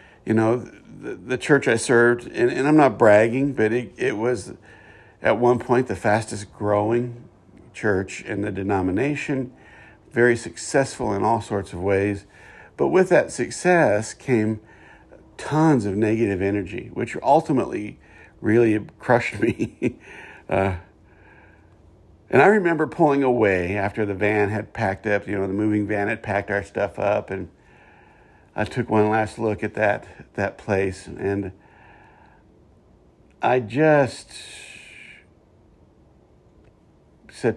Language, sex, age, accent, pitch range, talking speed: English, male, 50-69, American, 100-120 Hz, 135 wpm